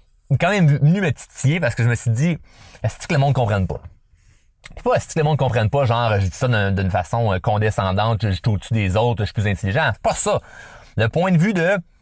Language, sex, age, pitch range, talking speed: French, male, 30-49, 115-170 Hz, 265 wpm